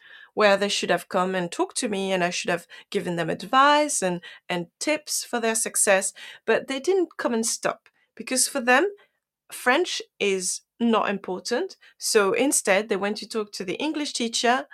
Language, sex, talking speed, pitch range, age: English, female, 185 wpm, 185-255 Hz, 30-49